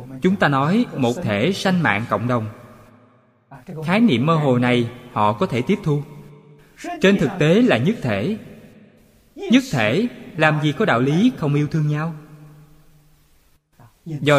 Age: 20-39